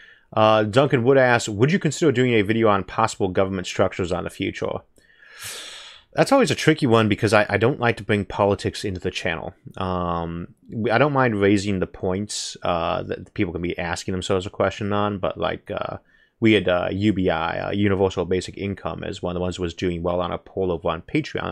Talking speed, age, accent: 210 wpm, 30-49, American